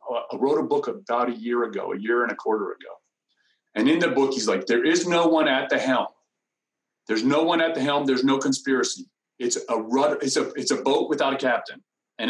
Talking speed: 235 wpm